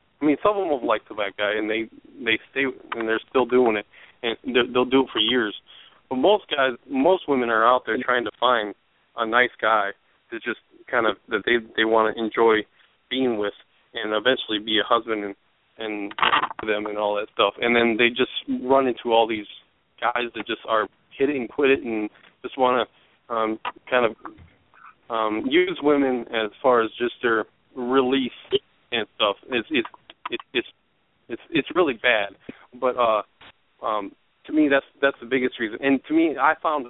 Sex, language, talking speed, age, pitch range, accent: male, English, 195 wpm, 20-39, 110-130 Hz, American